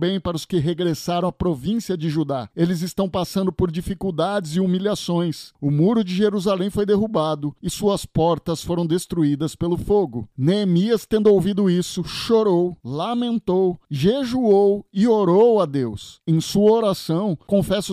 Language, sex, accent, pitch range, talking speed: Portuguese, male, Brazilian, 165-200 Hz, 145 wpm